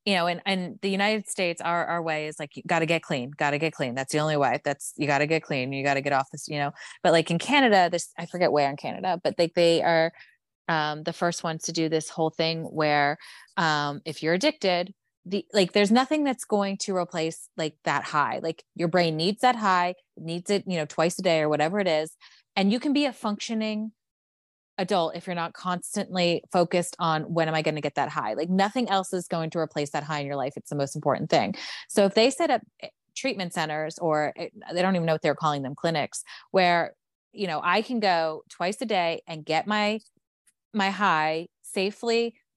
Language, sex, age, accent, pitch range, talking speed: English, female, 20-39, American, 155-195 Hz, 235 wpm